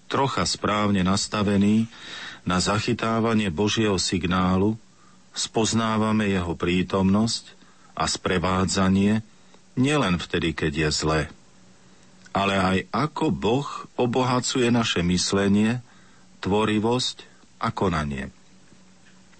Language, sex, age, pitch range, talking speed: Slovak, male, 50-69, 90-110 Hz, 85 wpm